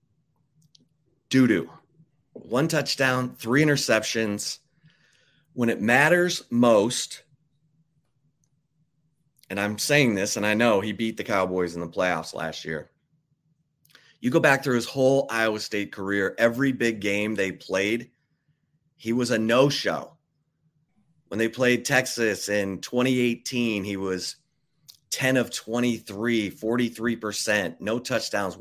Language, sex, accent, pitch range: English, male, American, 105-150 Hz